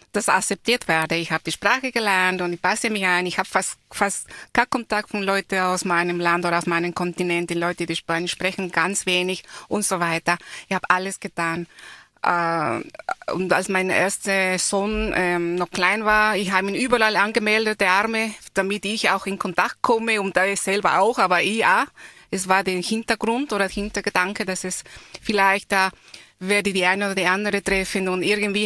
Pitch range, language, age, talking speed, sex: 180-220 Hz, German, 20-39, 195 wpm, female